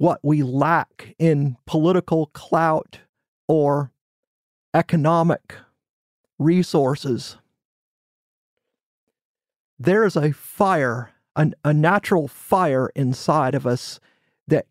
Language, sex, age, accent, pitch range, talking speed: English, male, 40-59, American, 140-175 Hz, 80 wpm